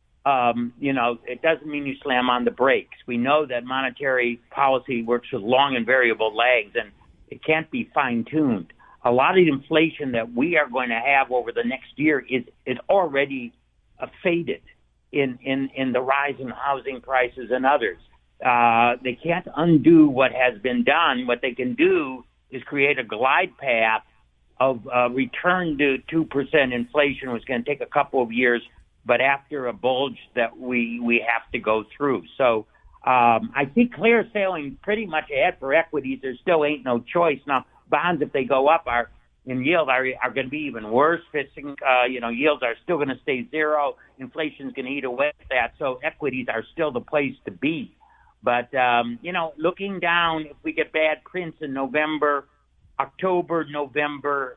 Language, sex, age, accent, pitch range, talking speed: English, male, 60-79, American, 120-150 Hz, 190 wpm